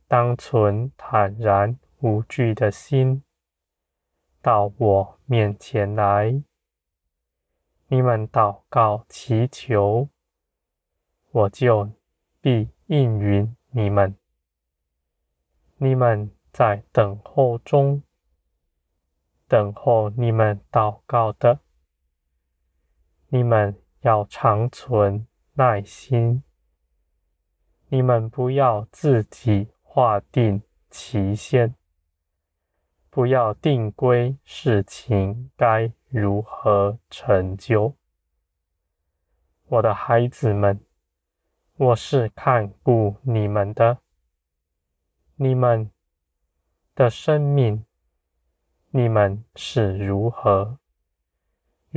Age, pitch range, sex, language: 20-39, 80-120 Hz, male, Chinese